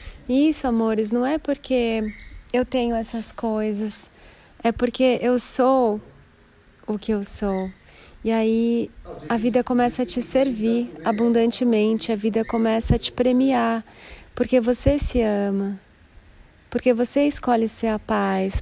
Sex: female